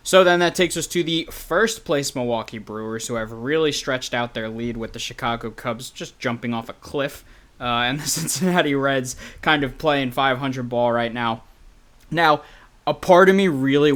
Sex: male